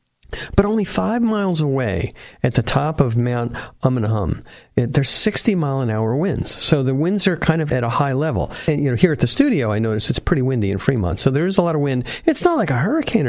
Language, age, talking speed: English, 50-69, 235 wpm